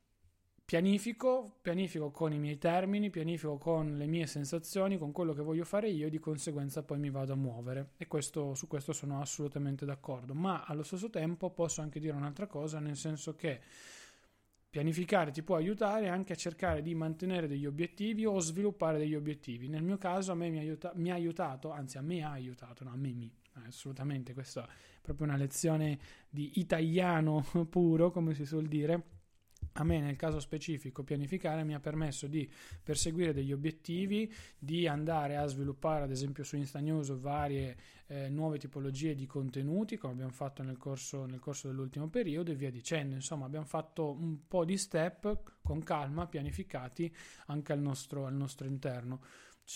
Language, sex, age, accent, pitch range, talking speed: Italian, male, 20-39, native, 140-165 Hz, 175 wpm